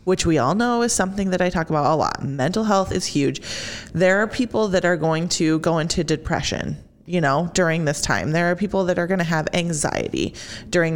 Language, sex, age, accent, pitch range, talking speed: English, female, 30-49, American, 155-185 Hz, 220 wpm